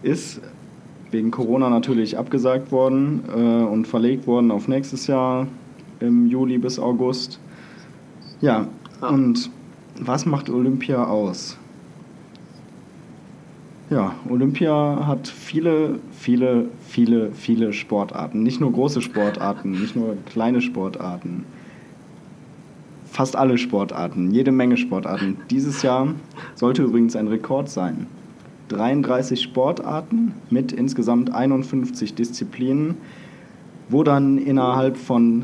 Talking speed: 105 wpm